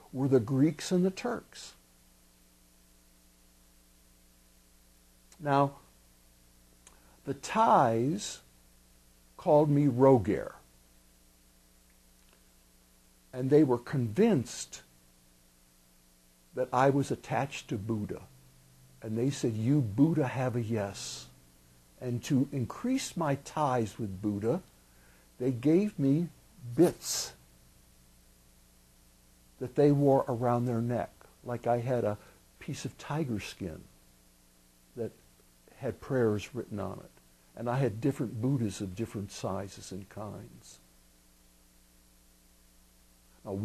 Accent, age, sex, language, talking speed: American, 60-79, male, English, 100 wpm